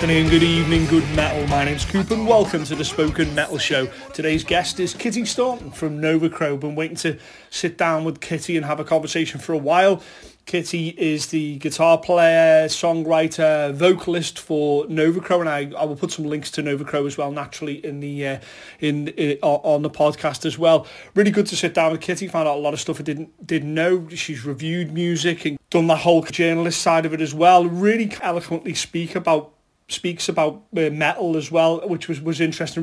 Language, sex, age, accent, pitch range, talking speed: English, male, 30-49, British, 155-175 Hz, 205 wpm